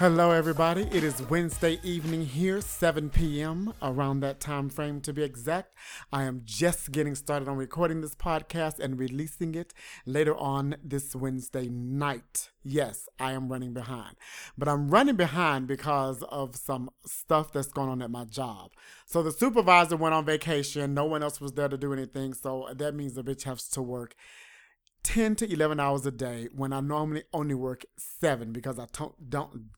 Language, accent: English, American